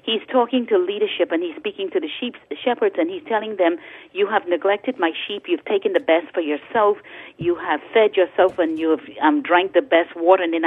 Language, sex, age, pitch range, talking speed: English, female, 40-59, 170-280 Hz, 230 wpm